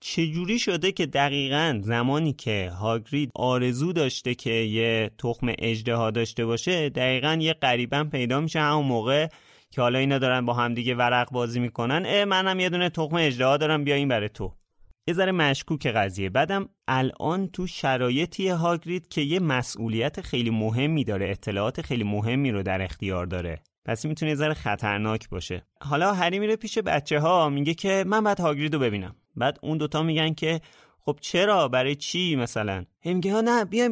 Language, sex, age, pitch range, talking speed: Persian, male, 30-49, 115-165 Hz, 160 wpm